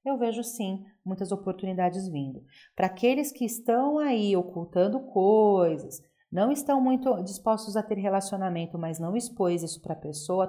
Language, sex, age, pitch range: Portuguese, female, 40-59, 175-215 Hz